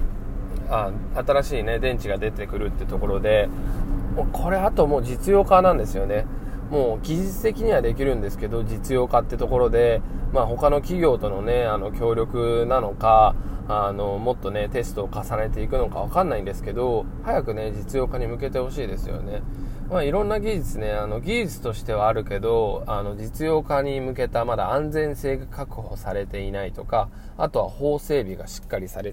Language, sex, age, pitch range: Japanese, male, 20-39, 100-135 Hz